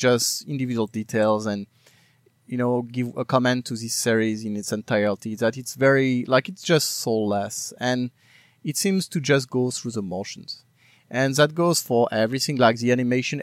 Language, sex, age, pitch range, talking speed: English, male, 30-49, 120-150 Hz, 175 wpm